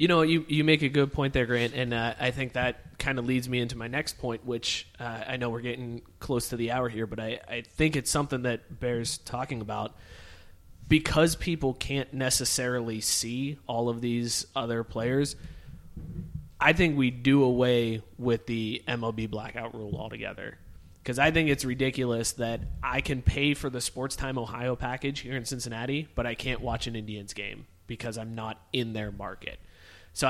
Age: 30-49